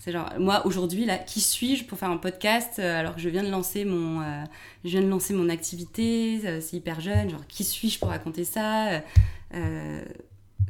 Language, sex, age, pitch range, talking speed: French, female, 20-39, 160-205 Hz, 210 wpm